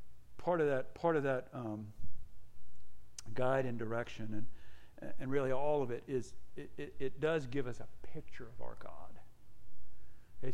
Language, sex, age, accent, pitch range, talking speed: English, male, 50-69, American, 105-140 Hz, 165 wpm